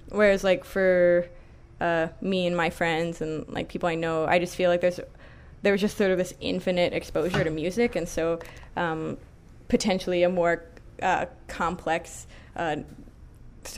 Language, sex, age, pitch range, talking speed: English, female, 20-39, 165-185 Hz, 155 wpm